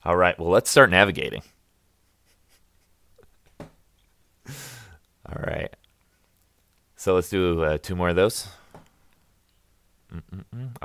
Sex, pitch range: male, 85-95 Hz